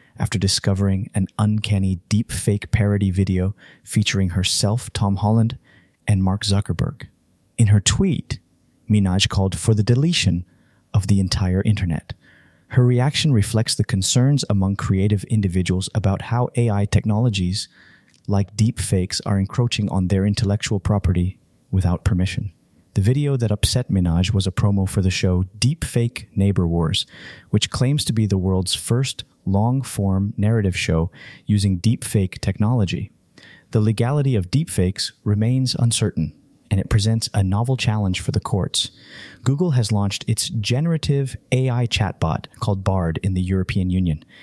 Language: English